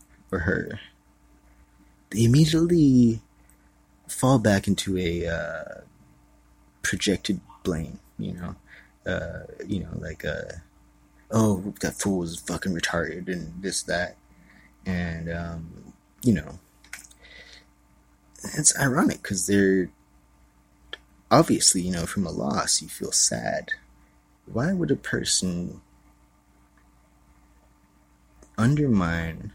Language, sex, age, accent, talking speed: English, male, 20-39, American, 95 wpm